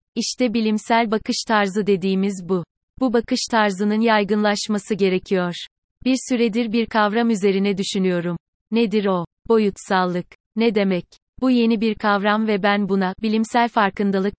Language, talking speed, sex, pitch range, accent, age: Turkish, 130 wpm, female, 195-230 Hz, native, 30-49